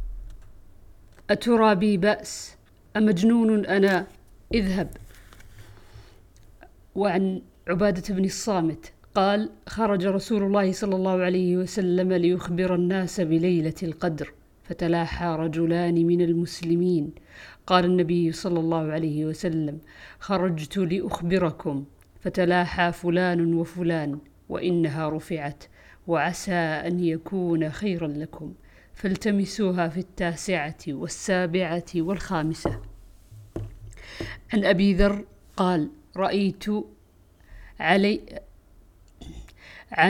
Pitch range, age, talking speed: 160-195 Hz, 50-69, 80 wpm